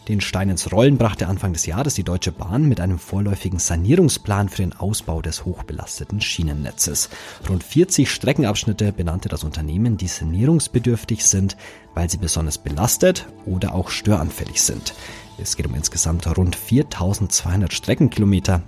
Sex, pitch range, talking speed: male, 85-110 Hz, 145 wpm